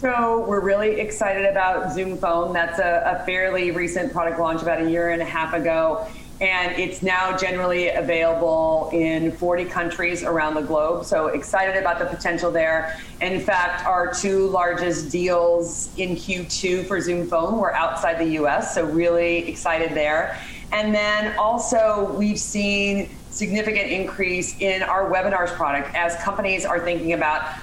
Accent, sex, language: American, female, English